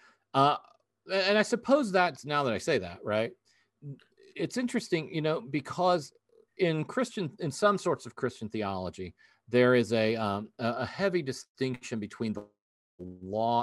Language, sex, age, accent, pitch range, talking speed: English, male, 40-59, American, 110-155 Hz, 150 wpm